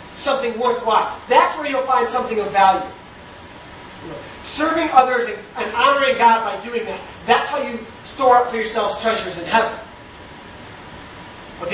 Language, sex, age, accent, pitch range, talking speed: English, male, 30-49, American, 220-265 Hz, 155 wpm